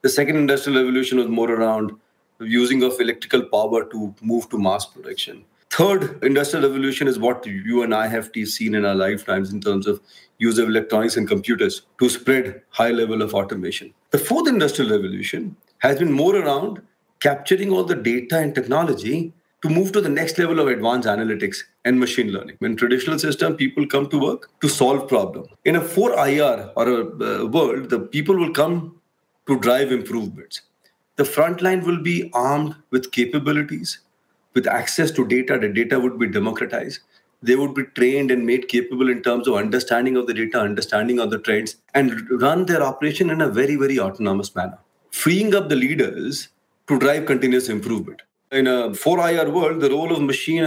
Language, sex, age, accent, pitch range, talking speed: English, male, 30-49, Indian, 120-160 Hz, 180 wpm